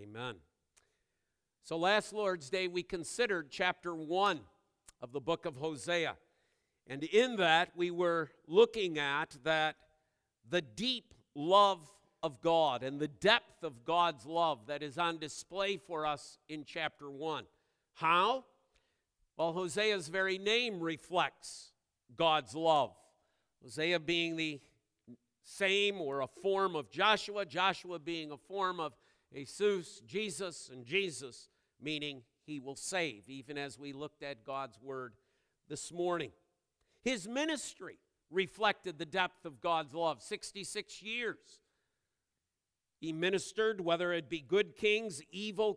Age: 50-69